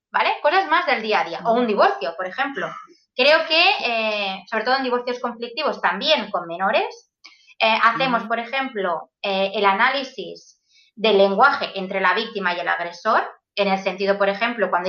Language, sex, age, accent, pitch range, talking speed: Spanish, female, 20-39, Spanish, 200-290 Hz, 175 wpm